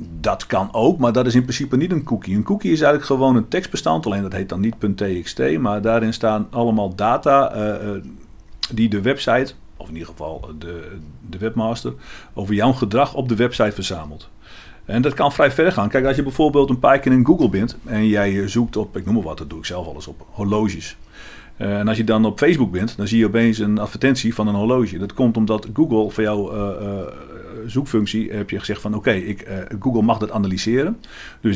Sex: male